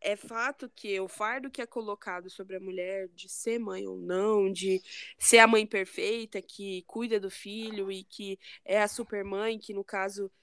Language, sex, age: Portuguese, female, 20-39